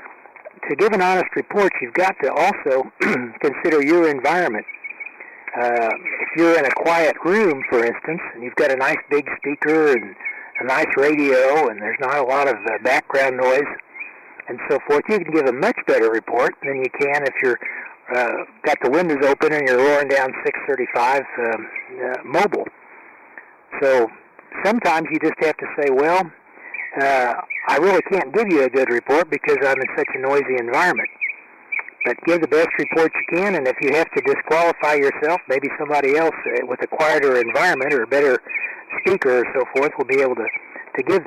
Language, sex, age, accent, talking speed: English, male, 60-79, American, 185 wpm